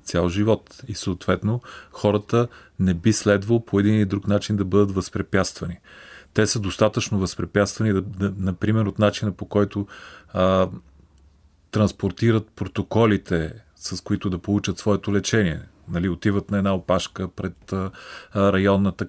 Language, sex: Bulgarian, male